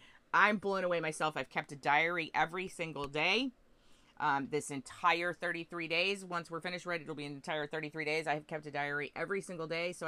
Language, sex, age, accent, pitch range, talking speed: English, female, 30-49, American, 140-175 Hz, 200 wpm